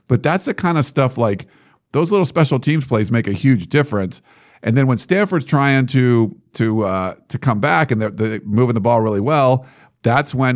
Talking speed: 210 wpm